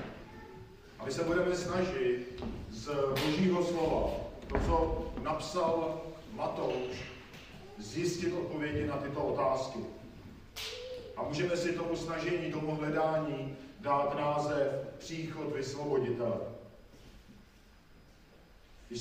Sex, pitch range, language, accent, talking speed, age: male, 140-175 Hz, Czech, native, 90 wpm, 40-59